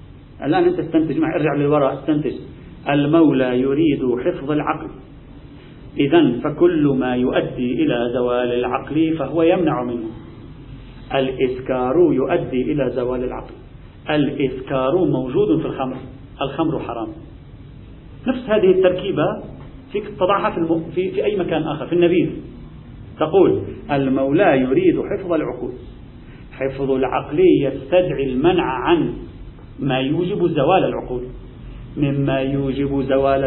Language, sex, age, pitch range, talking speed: Arabic, male, 40-59, 135-175 Hz, 110 wpm